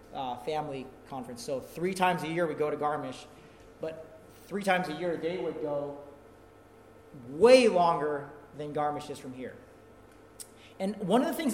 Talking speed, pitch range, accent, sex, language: 165 wpm, 150-215 Hz, American, male, English